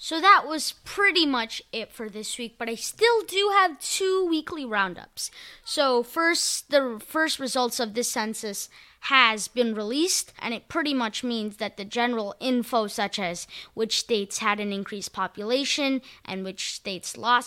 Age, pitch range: 20-39, 210-265 Hz